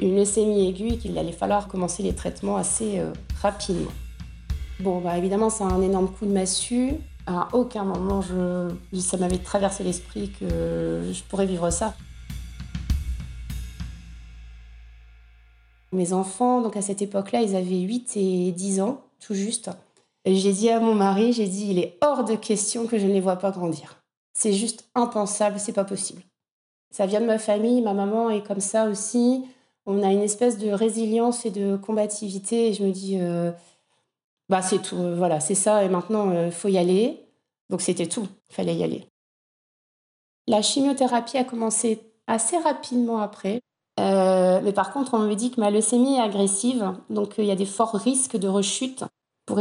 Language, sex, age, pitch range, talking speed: French, female, 30-49, 180-225 Hz, 185 wpm